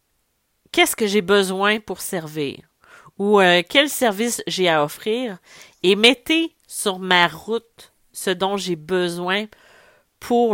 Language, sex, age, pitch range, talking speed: French, female, 40-59, 170-230 Hz, 130 wpm